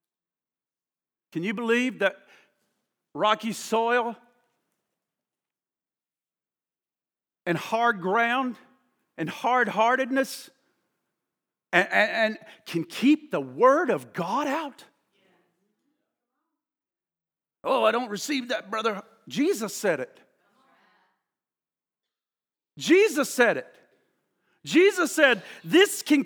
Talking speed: 80 wpm